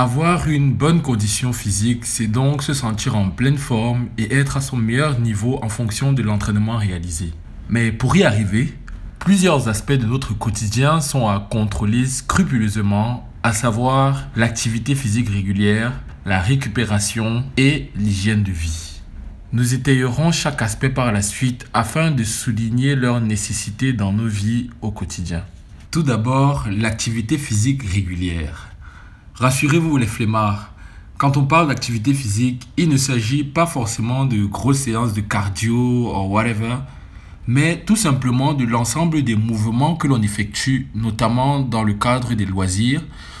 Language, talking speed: French, 145 wpm